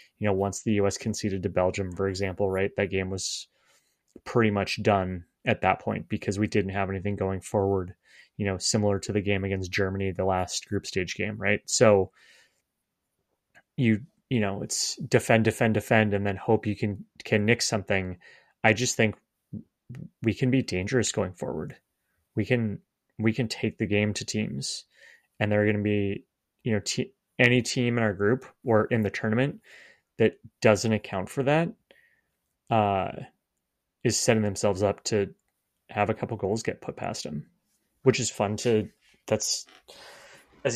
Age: 20-39